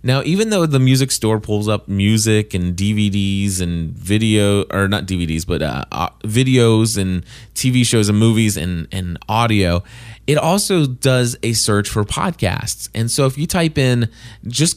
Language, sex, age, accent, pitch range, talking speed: English, male, 20-39, American, 100-135 Hz, 165 wpm